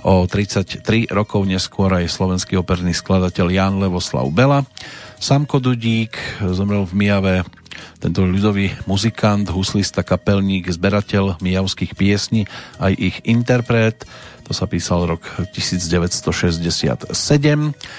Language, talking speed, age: Slovak, 105 wpm, 40-59